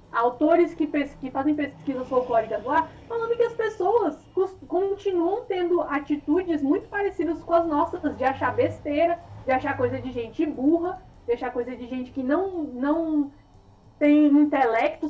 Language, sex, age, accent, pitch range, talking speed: Portuguese, female, 20-39, Brazilian, 265-340 Hz, 165 wpm